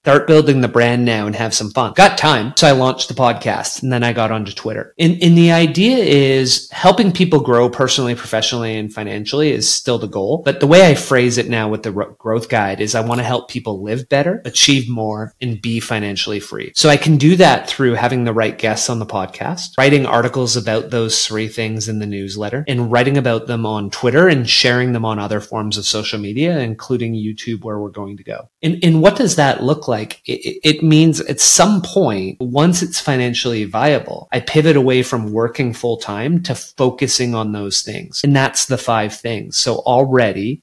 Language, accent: English, American